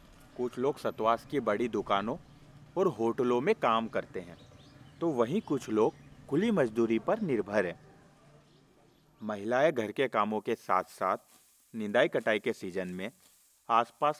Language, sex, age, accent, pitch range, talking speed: Hindi, male, 40-59, native, 110-155 Hz, 145 wpm